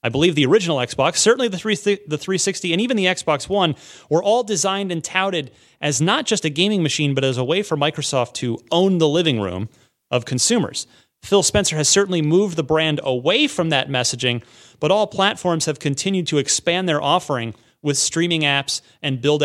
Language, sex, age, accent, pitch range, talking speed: English, male, 30-49, American, 125-175 Hz, 190 wpm